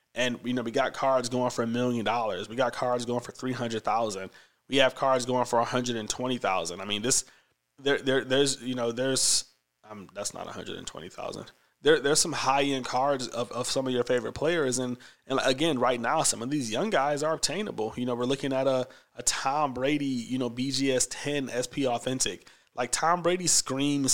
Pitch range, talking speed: 120-135 Hz, 225 wpm